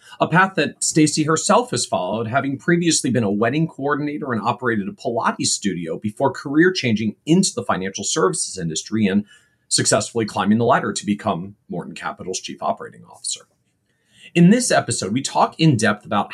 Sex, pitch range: male, 110-160 Hz